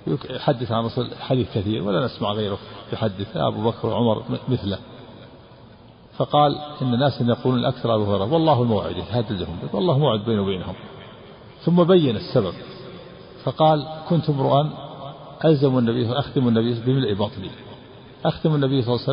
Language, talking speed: Arabic, 135 wpm